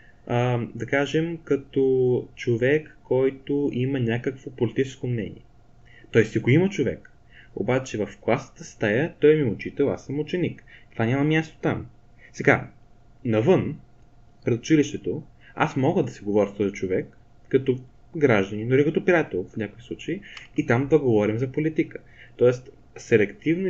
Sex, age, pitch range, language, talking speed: male, 20-39, 115-145 Hz, Bulgarian, 140 wpm